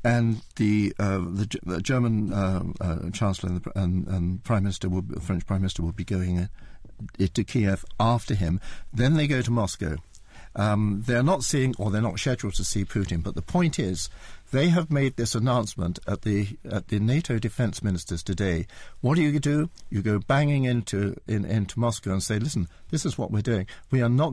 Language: English